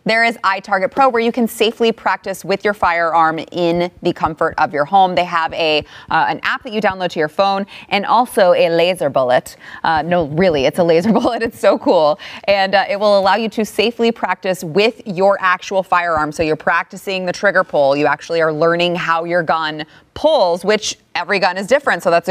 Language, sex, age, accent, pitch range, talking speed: English, female, 30-49, American, 170-210 Hz, 210 wpm